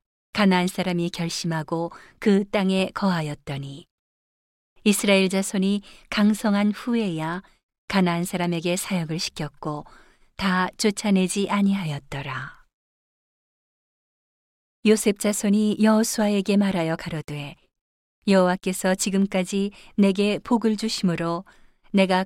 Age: 40-59